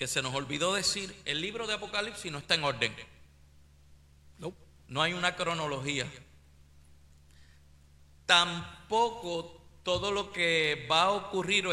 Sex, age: male, 50-69